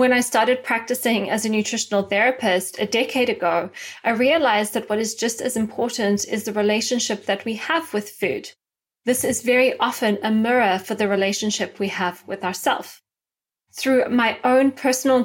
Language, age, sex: English, 20-39, female